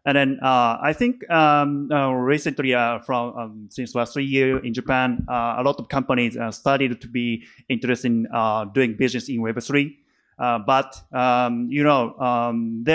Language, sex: Japanese, male